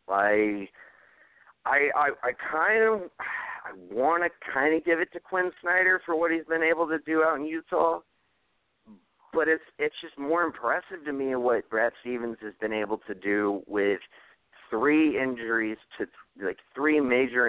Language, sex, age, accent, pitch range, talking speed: English, male, 30-49, American, 100-155 Hz, 165 wpm